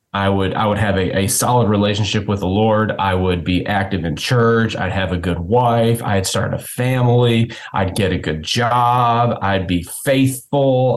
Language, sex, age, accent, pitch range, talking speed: English, male, 30-49, American, 100-120 Hz, 190 wpm